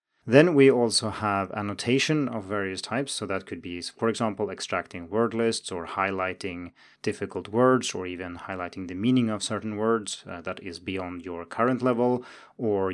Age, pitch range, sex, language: 30-49, 95-120 Hz, male, Chinese